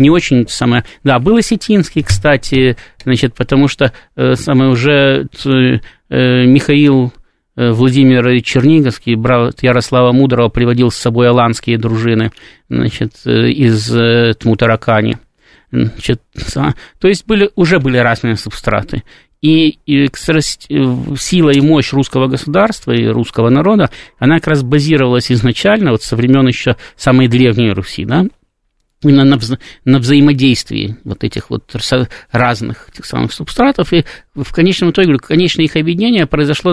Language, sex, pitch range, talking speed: Russian, male, 120-155 Hz, 130 wpm